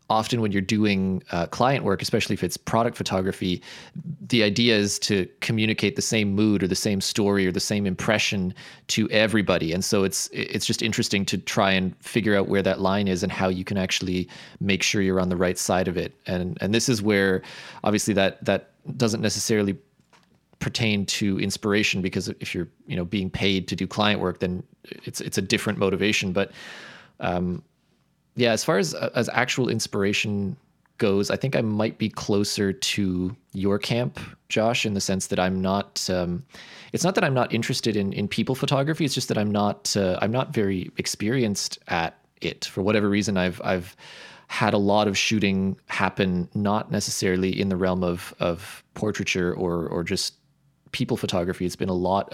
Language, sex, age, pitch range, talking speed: English, male, 20-39, 95-110 Hz, 190 wpm